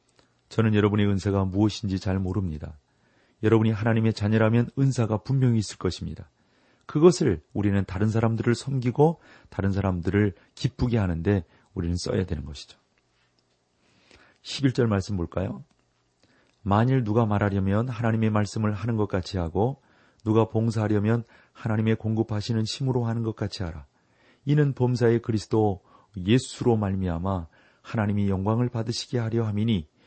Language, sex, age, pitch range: Korean, male, 30-49, 95-120 Hz